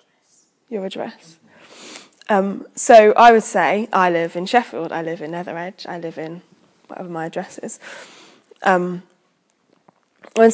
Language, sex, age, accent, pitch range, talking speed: English, female, 10-29, British, 180-220 Hz, 135 wpm